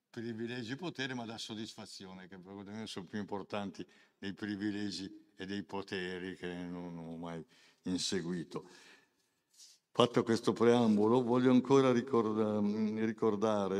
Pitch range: 95-115 Hz